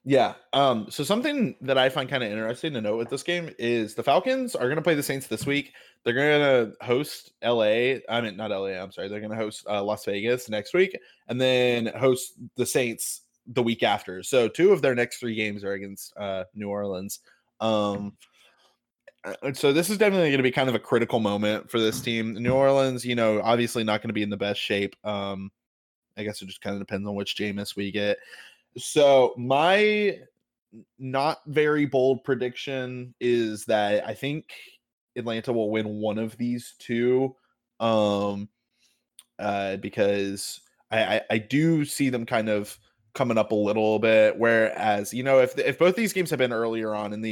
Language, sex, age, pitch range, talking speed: English, male, 20-39, 105-130 Hz, 195 wpm